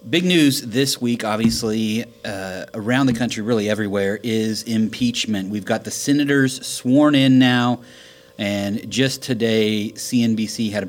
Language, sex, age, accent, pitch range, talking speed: English, male, 30-49, American, 100-120 Hz, 145 wpm